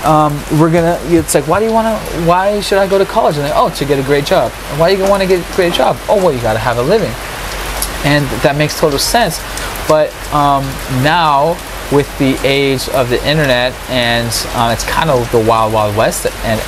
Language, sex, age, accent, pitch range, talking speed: English, male, 20-39, American, 115-145 Hz, 235 wpm